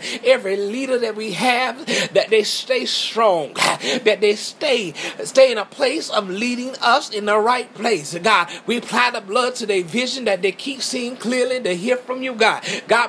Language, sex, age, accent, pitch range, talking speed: English, male, 30-49, American, 215-255 Hz, 195 wpm